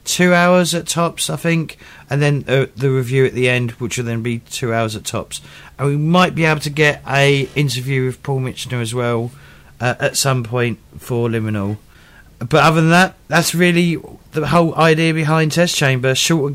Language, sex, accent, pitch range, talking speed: English, male, British, 125-175 Hz, 200 wpm